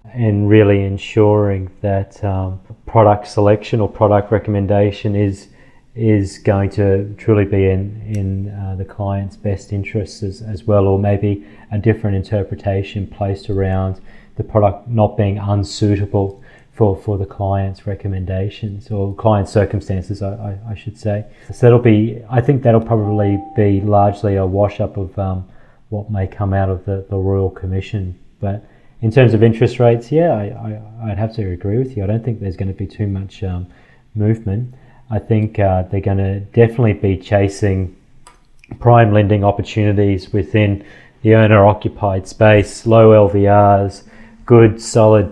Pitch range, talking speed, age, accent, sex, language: 100-110 Hz, 160 wpm, 30-49, Australian, male, English